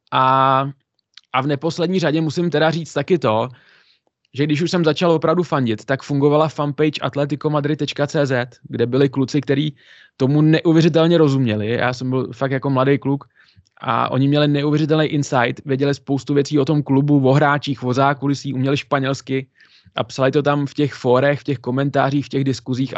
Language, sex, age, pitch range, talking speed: Czech, male, 20-39, 125-145 Hz, 170 wpm